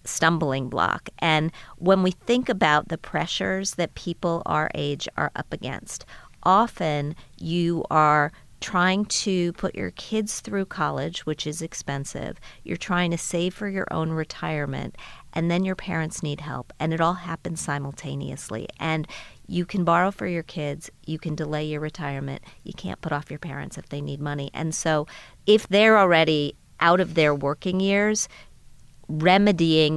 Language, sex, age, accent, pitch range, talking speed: English, female, 40-59, American, 145-175 Hz, 160 wpm